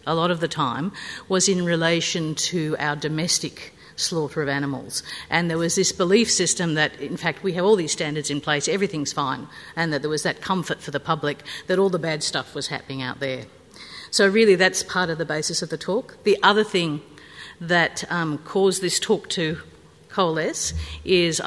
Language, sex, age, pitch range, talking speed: English, female, 50-69, 145-175 Hz, 200 wpm